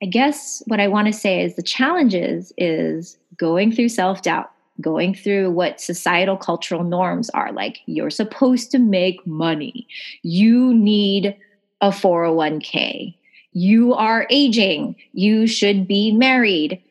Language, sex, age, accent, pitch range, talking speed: English, female, 20-39, American, 170-235 Hz, 135 wpm